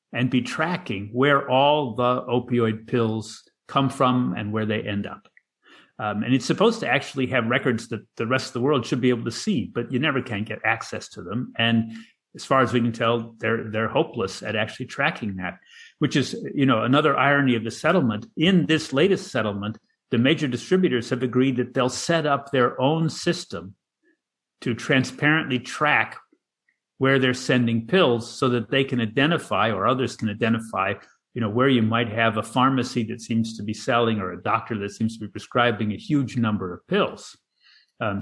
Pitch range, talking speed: 115-145 Hz, 195 wpm